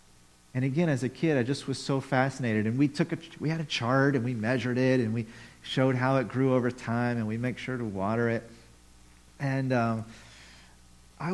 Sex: male